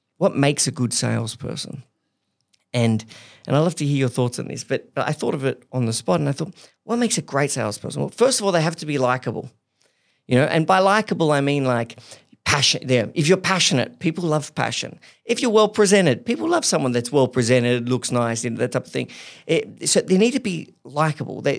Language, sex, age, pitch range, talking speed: English, male, 40-59, 125-165 Hz, 220 wpm